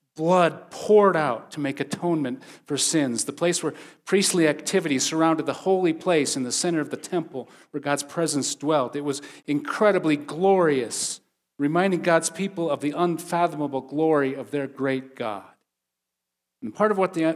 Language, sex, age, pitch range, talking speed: English, male, 40-59, 135-175 Hz, 165 wpm